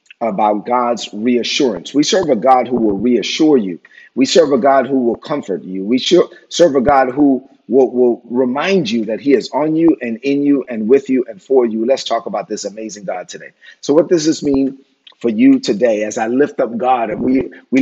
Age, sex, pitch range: 40-59, male, 115-140 Hz